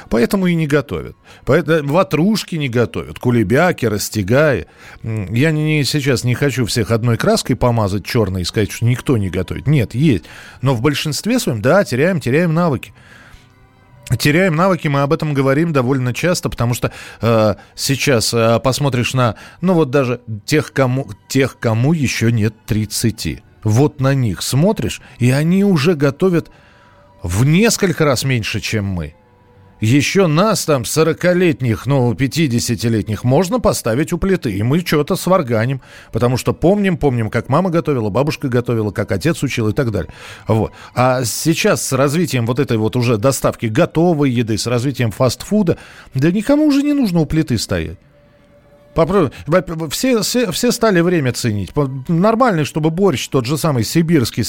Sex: male